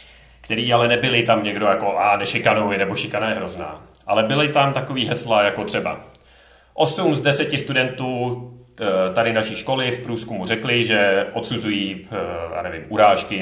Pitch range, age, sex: 105-150 Hz, 30-49, male